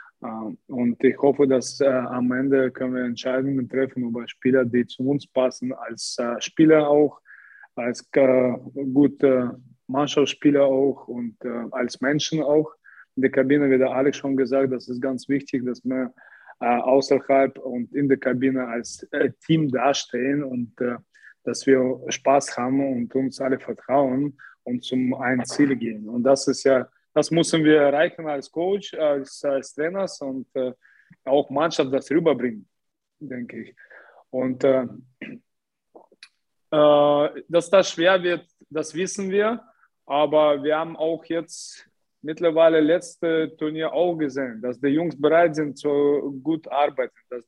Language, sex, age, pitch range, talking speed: English, male, 20-39, 130-150 Hz, 150 wpm